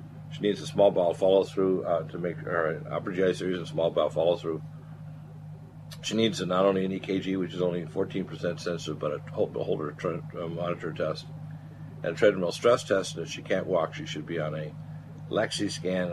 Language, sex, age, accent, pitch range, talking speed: English, male, 50-69, American, 95-155 Hz, 210 wpm